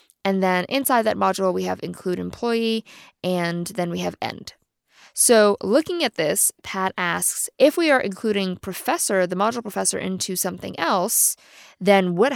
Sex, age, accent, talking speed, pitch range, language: female, 20-39, American, 160 wpm, 180-215 Hz, English